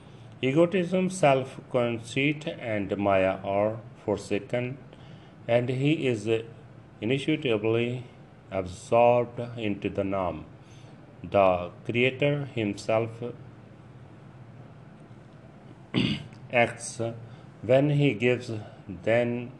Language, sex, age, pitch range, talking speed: Punjabi, male, 40-59, 110-135 Hz, 75 wpm